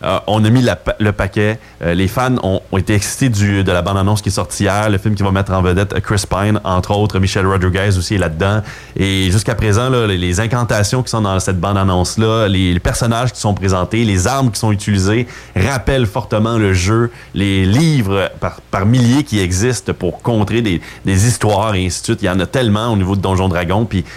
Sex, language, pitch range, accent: male, French, 95-115 Hz, Canadian